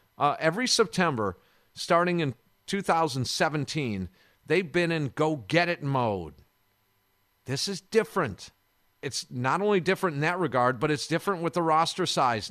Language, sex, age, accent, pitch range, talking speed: English, male, 50-69, American, 125-180 Hz, 135 wpm